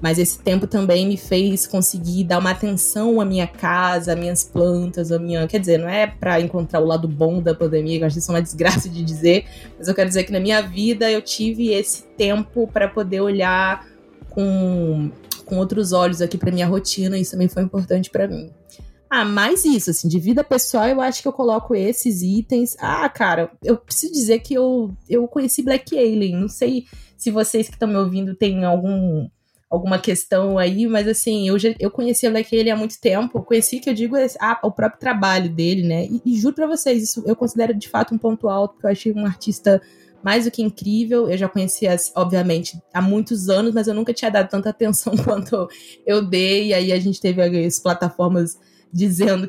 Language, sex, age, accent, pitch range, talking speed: Portuguese, female, 20-39, Brazilian, 175-220 Hz, 210 wpm